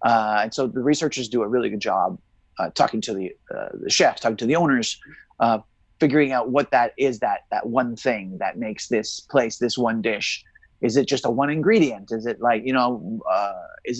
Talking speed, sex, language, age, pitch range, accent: 200 wpm, male, English, 30-49, 125-155 Hz, American